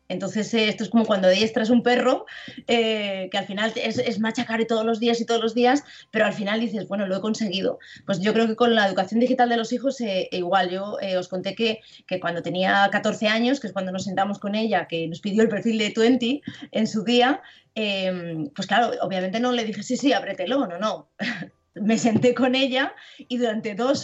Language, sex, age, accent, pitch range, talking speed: Spanish, female, 20-39, Spanish, 195-250 Hz, 225 wpm